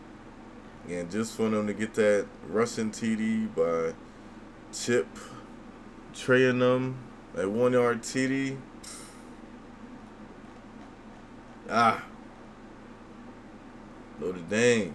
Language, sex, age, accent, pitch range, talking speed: English, male, 20-39, American, 110-165 Hz, 70 wpm